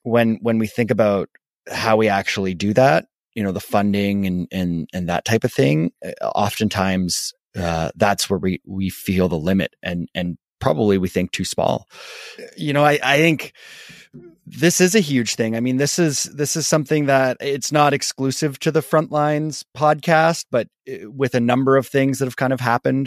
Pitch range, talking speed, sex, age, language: 95-135 Hz, 190 wpm, male, 30-49, English